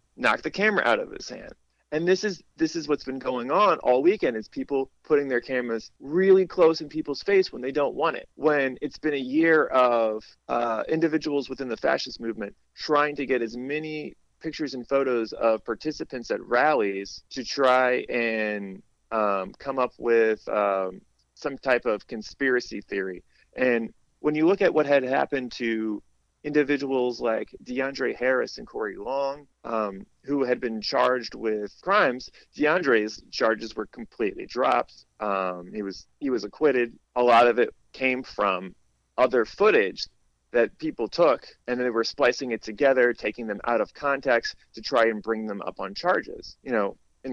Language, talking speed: English, 175 wpm